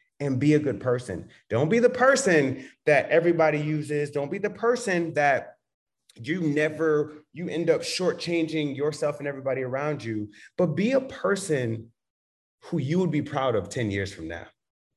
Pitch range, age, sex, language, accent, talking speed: 110-150 Hz, 30-49, male, English, American, 170 wpm